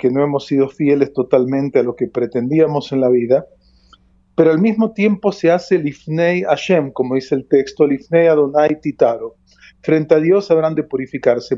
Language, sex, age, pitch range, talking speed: Spanish, male, 40-59, 130-170 Hz, 185 wpm